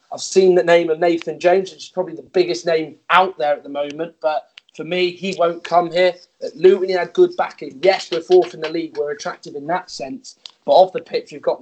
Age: 30-49